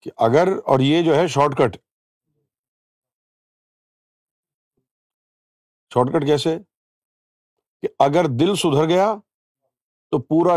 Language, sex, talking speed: Urdu, male, 95 wpm